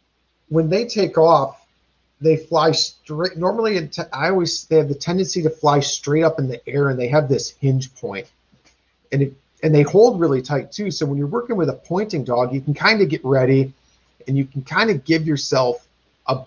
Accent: American